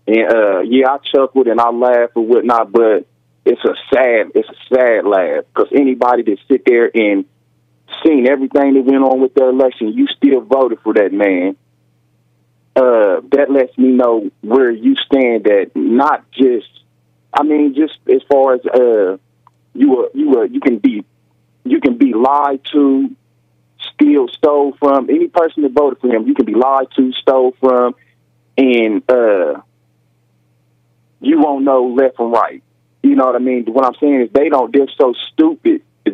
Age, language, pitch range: 30-49, English, 115-155 Hz